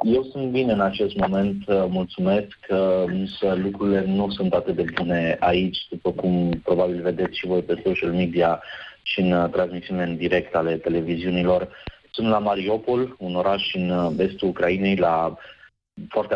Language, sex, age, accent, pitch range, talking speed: Romanian, male, 20-39, native, 90-95 Hz, 150 wpm